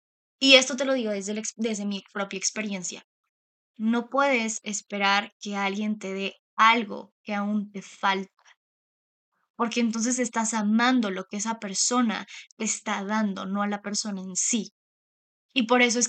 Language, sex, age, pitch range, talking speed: Spanish, female, 10-29, 205-240 Hz, 160 wpm